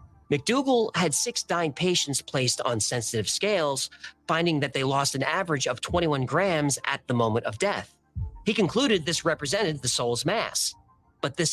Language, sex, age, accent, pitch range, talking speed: English, male, 40-59, American, 125-175 Hz, 165 wpm